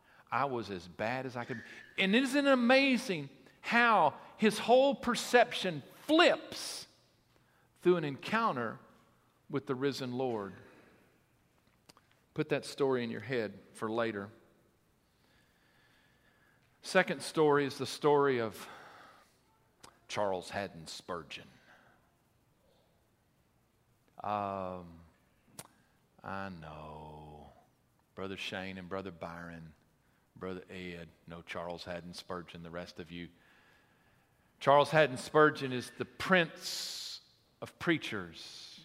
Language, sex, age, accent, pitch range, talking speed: English, male, 40-59, American, 95-140 Hz, 105 wpm